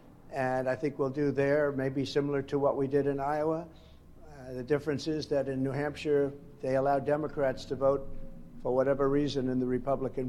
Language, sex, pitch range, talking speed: English, male, 135-165 Hz, 190 wpm